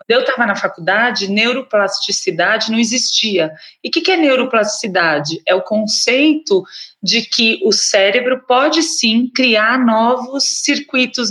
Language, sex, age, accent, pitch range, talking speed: Portuguese, female, 30-49, Brazilian, 195-265 Hz, 125 wpm